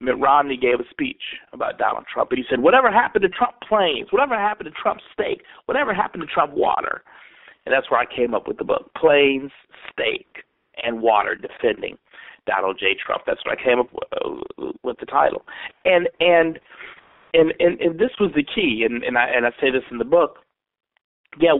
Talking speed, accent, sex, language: 195 wpm, American, male, English